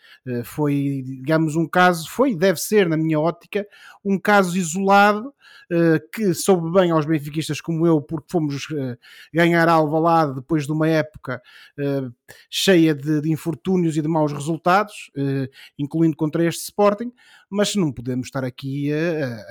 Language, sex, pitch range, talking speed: Portuguese, male, 150-185 Hz, 140 wpm